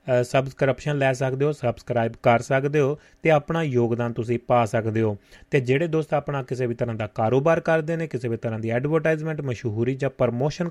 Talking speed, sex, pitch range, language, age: 190 wpm, male, 120-145 Hz, Punjabi, 30-49